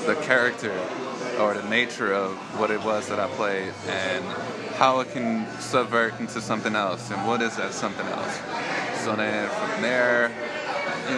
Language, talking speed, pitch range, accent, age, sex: English, 165 wpm, 110-125 Hz, American, 20-39, male